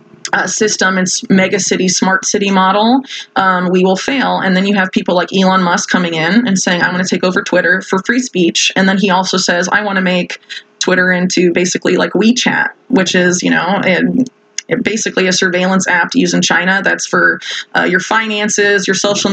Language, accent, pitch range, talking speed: English, American, 185-210 Hz, 210 wpm